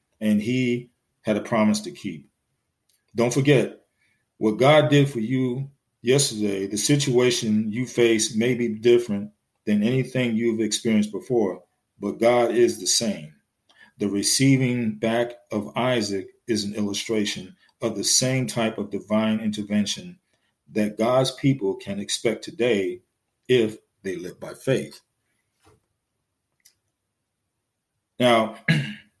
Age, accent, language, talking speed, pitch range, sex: 40-59, American, English, 120 wpm, 105-125 Hz, male